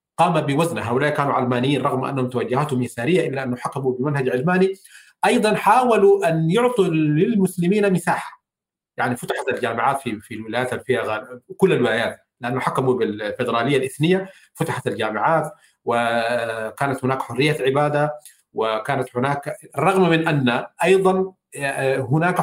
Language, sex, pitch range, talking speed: Arabic, male, 130-180 Hz, 125 wpm